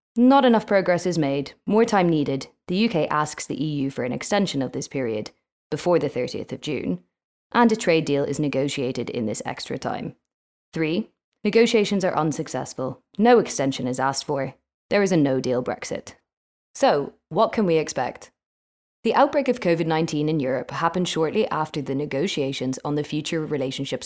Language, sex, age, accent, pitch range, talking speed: English, female, 20-39, Irish, 135-175 Hz, 170 wpm